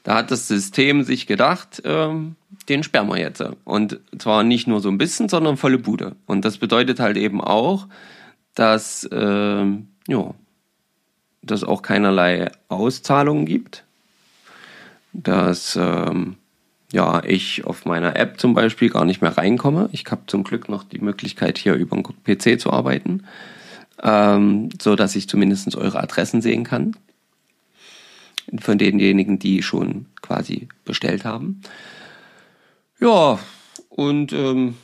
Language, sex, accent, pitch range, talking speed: German, male, German, 100-135 Hz, 130 wpm